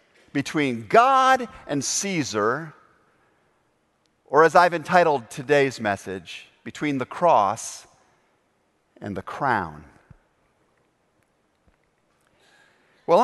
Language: English